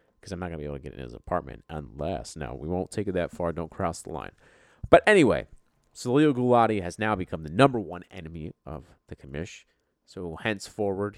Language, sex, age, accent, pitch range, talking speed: English, male, 30-49, American, 80-105 Hz, 215 wpm